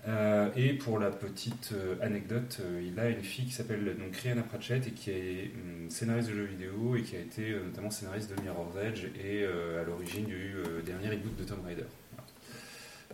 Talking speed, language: 205 wpm, French